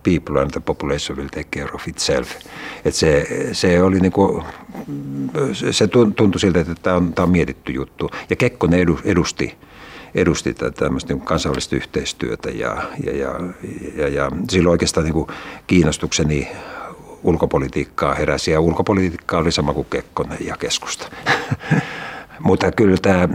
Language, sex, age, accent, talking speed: Finnish, male, 60-79, native, 125 wpm